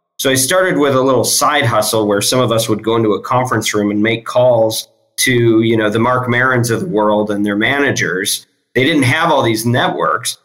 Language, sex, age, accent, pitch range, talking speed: English, male, 40-59, American, 110-130 Hz, 225 wpm